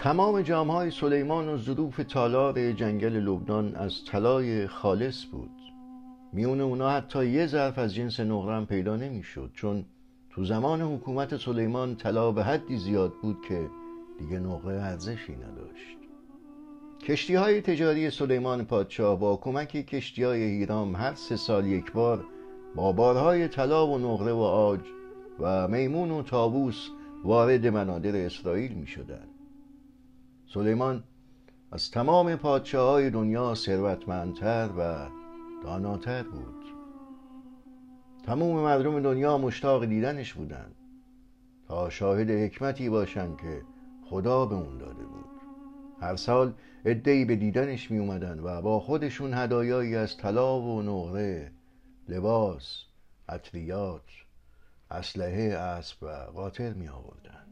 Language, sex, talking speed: Persian, male, 115 wpm